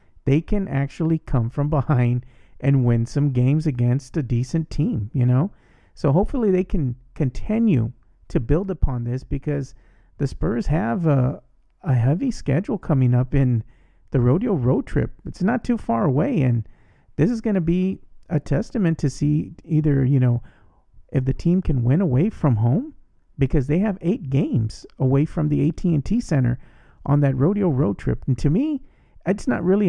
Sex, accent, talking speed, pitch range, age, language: male, American, 175 wpm, 125-185 Hz, 40-59, English